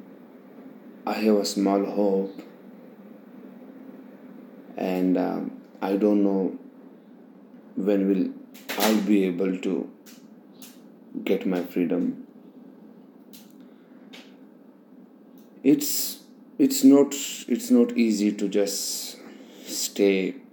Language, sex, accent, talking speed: English, male, Indian, 80 wpm